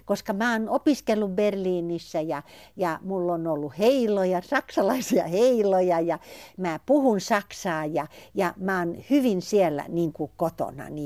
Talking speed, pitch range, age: 135 wpm, 150-200 Hz, 60-79